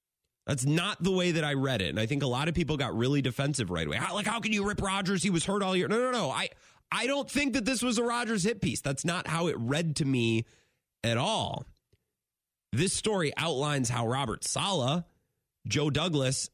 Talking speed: 230 wpm